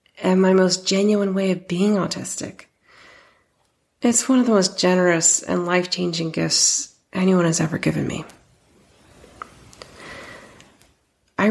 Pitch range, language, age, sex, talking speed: 175-230 Hz, English, 30-49, female, 120 wpm